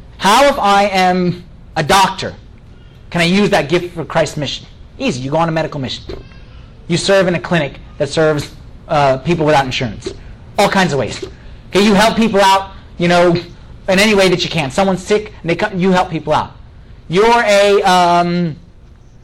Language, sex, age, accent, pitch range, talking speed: English, male, 30-49, American, 155-195 Hz, 205 wpm